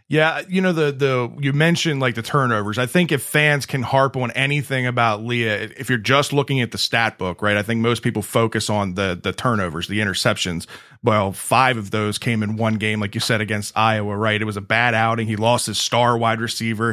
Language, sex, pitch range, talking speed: English, male, 110-140 Hz, 230 wpm